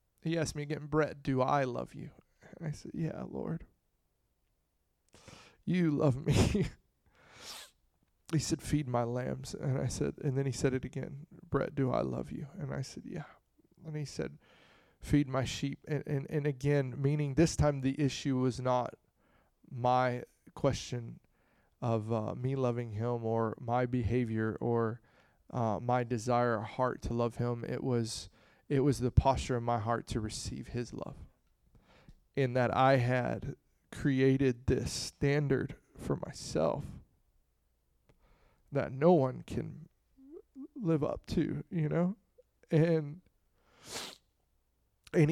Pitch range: 120-150 Hz